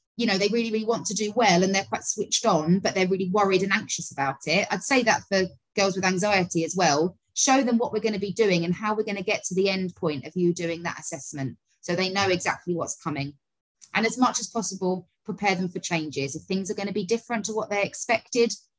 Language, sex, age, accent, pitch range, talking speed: English, female, 20-39, British, 170-220 Hz, 255 wpm